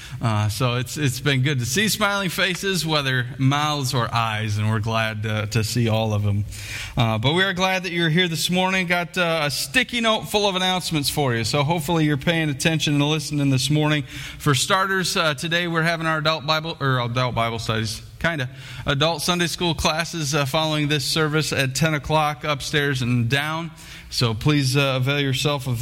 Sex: male